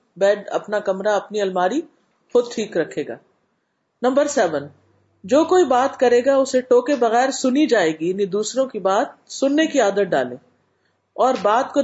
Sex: female